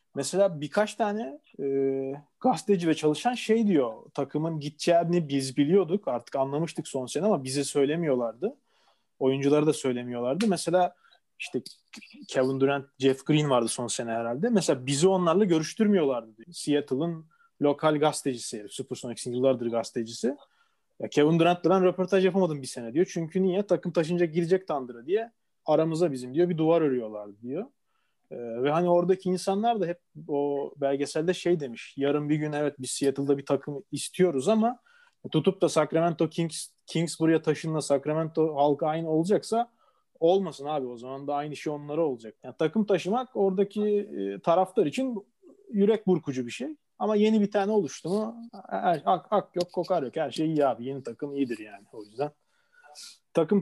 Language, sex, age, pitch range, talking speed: Turkish, male, 30-49, 140-190 Hz, 160 wpm